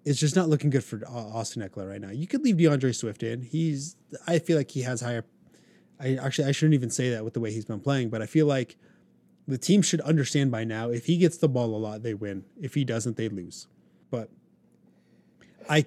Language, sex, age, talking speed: English, male, 30-49, 235 wpm